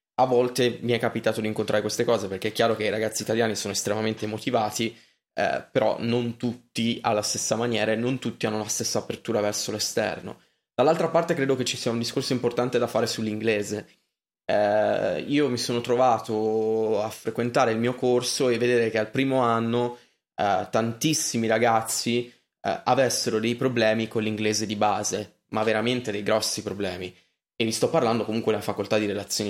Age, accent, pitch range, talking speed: 20-39, native, 110-125 Hz, 180 wpm